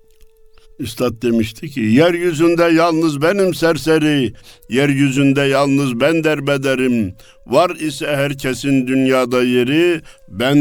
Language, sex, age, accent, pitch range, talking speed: Turkish, male, 60-79, native, 105-165 Hz, 95 wpm